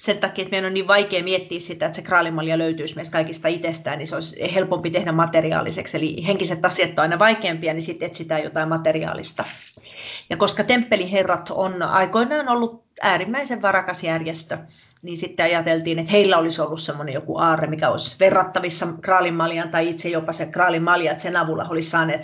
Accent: native